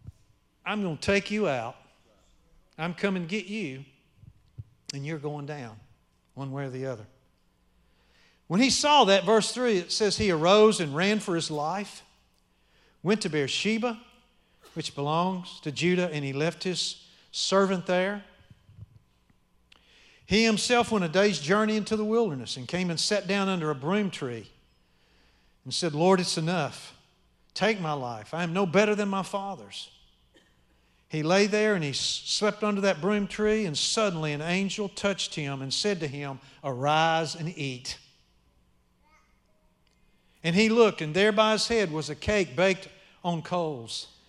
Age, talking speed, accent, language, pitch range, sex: 50-69, 160 wpm, American, English, 145-210 Hz, male